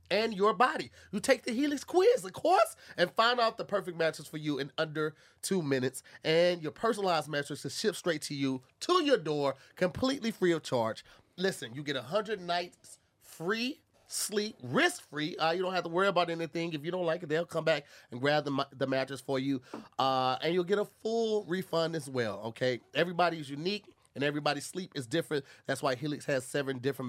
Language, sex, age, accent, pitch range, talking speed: English, male, 30-49, American, 140-180 Hz, 205 wpm